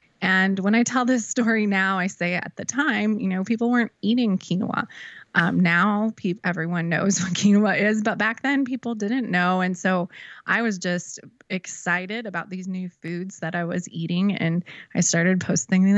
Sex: female